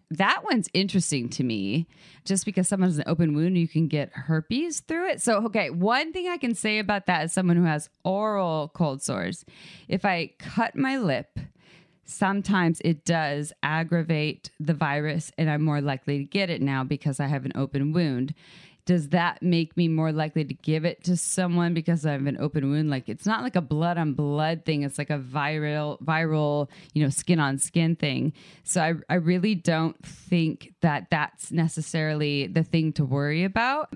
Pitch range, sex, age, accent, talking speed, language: 145-180 Hz, female, 20-39, American, 195 wpm, English